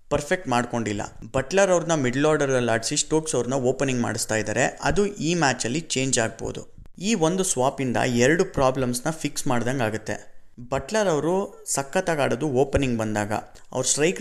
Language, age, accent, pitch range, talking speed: Kannada, 20-39, native, 120-150 Hz, 140 wpm